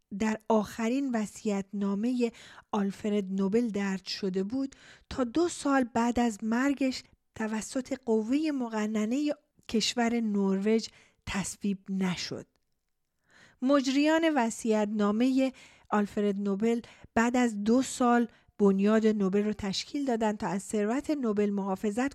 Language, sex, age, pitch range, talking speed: Persian, female, 40-59, 200-255 Hz, 110 wpm